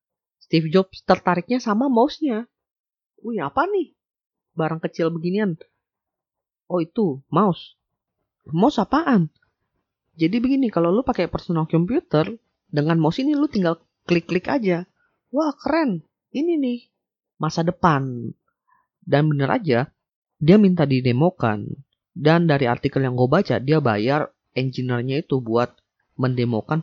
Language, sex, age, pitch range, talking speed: Indonesian, female, 30-49, 130-180 Hz, 120 wpm